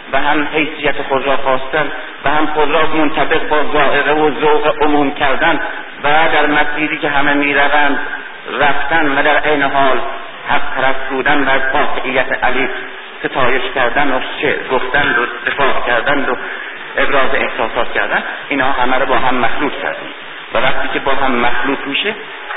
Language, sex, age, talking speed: Persian, male, 50-69, 155 wpm